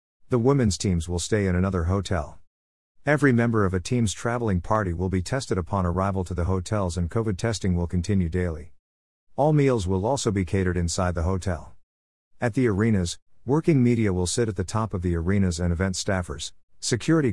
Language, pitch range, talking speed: English, 90-110 Hz, 190 wpm